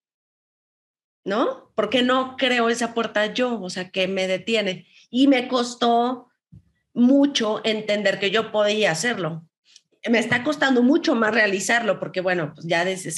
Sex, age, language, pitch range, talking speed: female, 30-49, Spanish, 185-245 Hz, 145 wpm